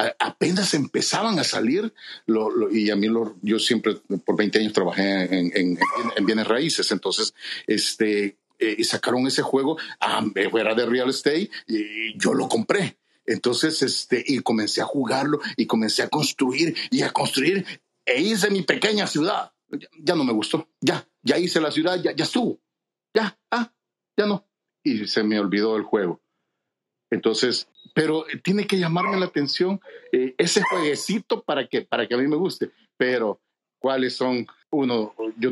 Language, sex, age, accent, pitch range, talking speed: Spanish, male, 50-69, Mexican, 105-155 Hz, 170 wpm